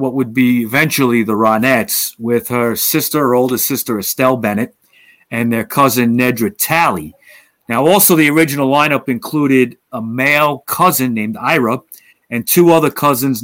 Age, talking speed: 40-59, 150 wpm